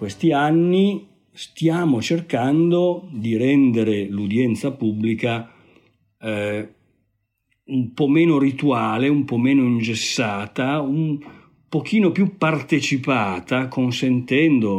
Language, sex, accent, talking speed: Italian, male, native, 90 wpm